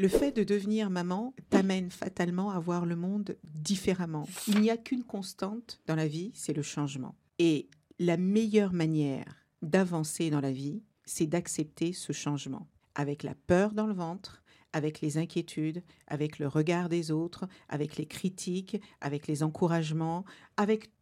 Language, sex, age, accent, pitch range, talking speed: French, female, 50-69, French, 155-190 Hz, 160 wpm